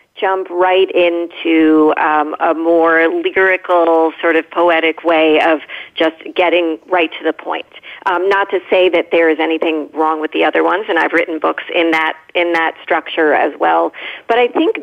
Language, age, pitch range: English, 40-59, 160-200 Hz